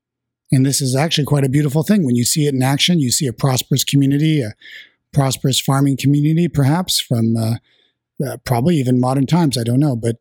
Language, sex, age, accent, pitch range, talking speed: English, male, 50-69, American, 125-145 Hz, 205 wpm